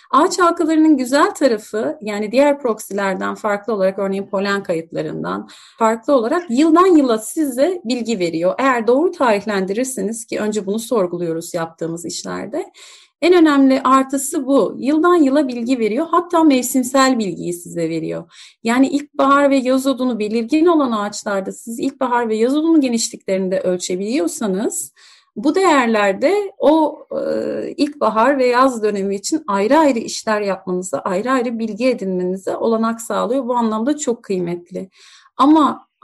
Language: Turkish